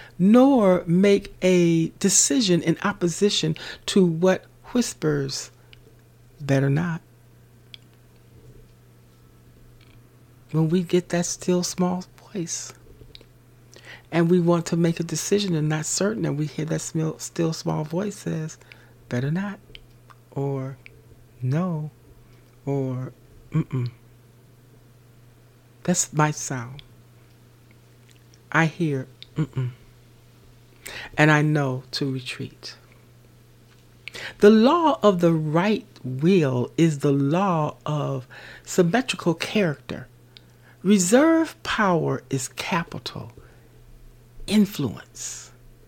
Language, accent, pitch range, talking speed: English, American, 120-180 Hz, 95 wpm